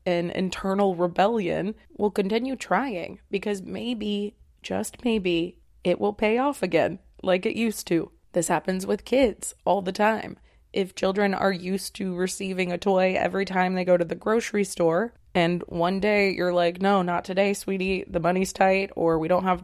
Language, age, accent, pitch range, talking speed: English, 20-39, American, 180-205 Hz, 175 wpm